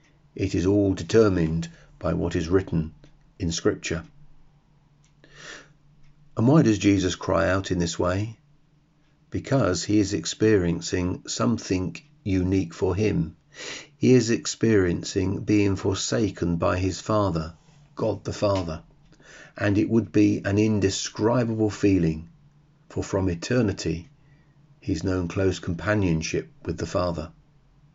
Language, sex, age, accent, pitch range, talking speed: English, male, 40-59, British, 95-145 Hz, 120 wpm